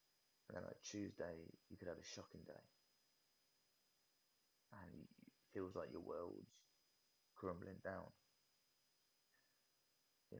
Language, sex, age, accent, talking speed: English, male, 20-39, British, 115 wpm